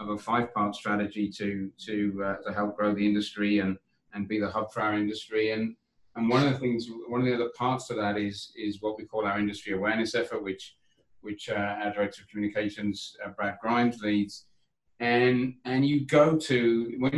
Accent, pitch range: British, 105-130 Hz